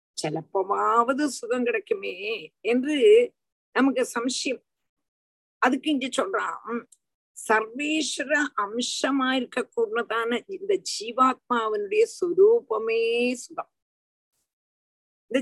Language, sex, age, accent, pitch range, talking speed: Tamil, female, 50-69, native, 245-345 Hz, 65 wpm